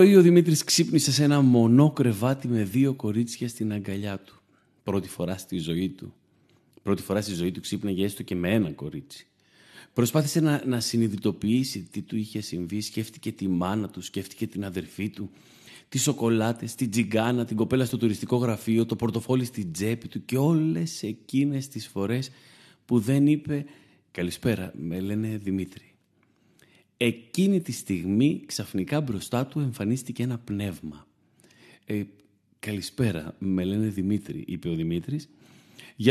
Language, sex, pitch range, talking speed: Greek, male, 95-130 Hz, 150 wpm